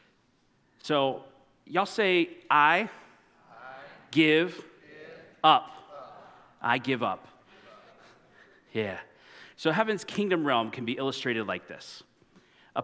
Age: 30-49